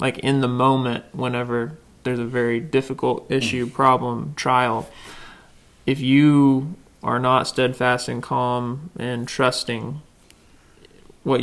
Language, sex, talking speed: English, male, 115 wpm